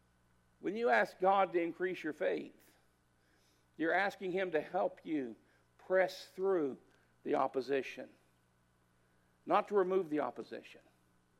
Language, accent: English, American